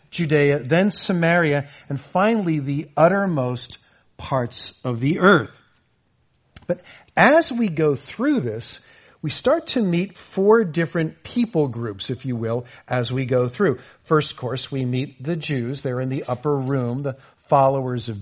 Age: 50-69